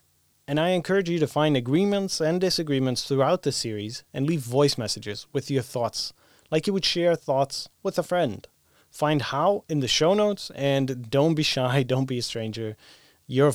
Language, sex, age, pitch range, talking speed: English, male, 30-49, 120-155 Hz, 185 wpm